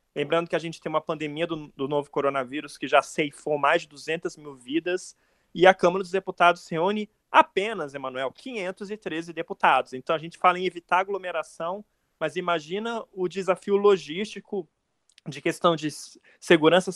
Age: 20-39